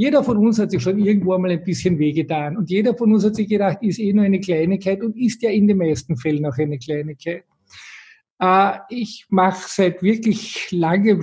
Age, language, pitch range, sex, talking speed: 50-69, German, 170-215 Hz, male, 210 wpm